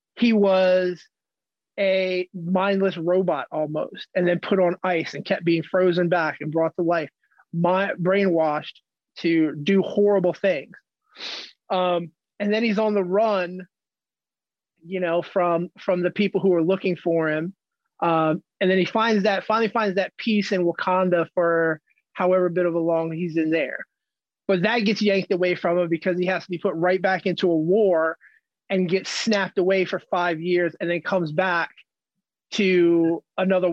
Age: 30-49